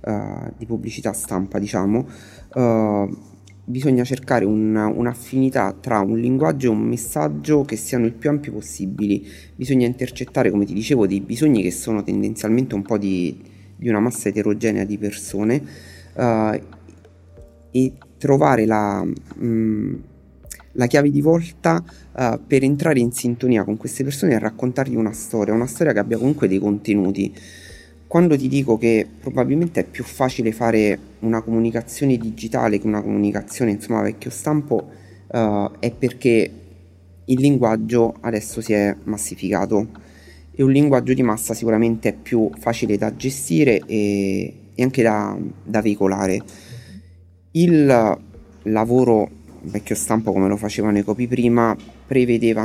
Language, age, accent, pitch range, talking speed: Italian, 30-49, native, 100-120 Hz, 140 wpm